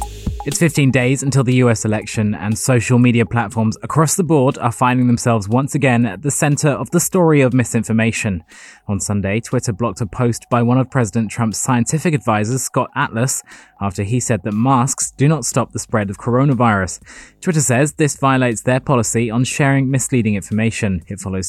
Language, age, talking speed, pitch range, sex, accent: English, 20-39, 185 wpm, 110-135 Hz, male, British